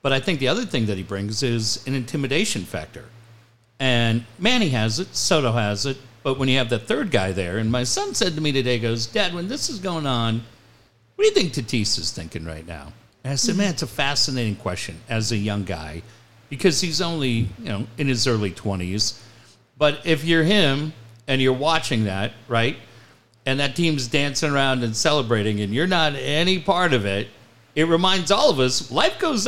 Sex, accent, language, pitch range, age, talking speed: male, American, English, 115-165 Hz, 50-69, 210 wpm